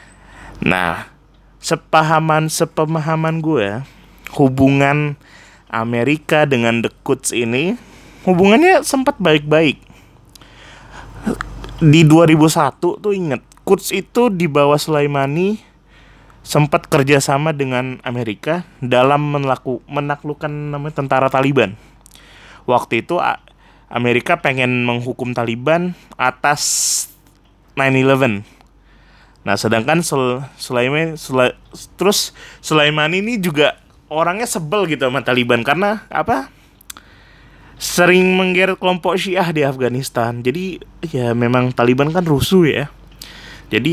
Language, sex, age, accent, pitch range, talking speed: Indonesian, male, 20-39, native, 125-165 Hz, 95 wpm